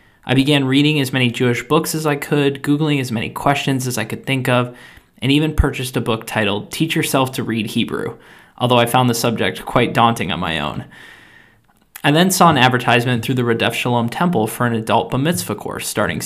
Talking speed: 205 wpm